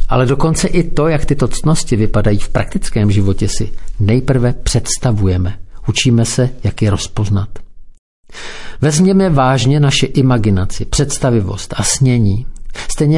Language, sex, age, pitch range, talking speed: Czech, male, 50-69, 105-130 Hz, 125 wpm